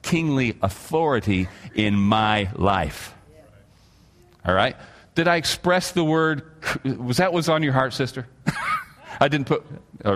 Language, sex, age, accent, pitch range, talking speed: English, male, 40-59, American, 95-120 Hz, 135 wpm